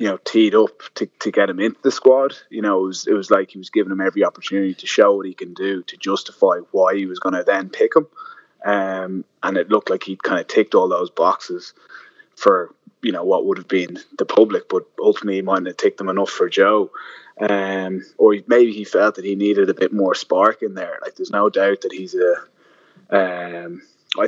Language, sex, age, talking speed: English, male, 20-39, 225 wpm